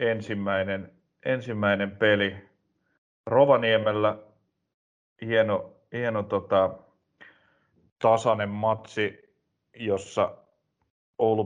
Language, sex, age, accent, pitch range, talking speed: Finnish, male, 30-49, native, 100-110 Hz, 60 wpm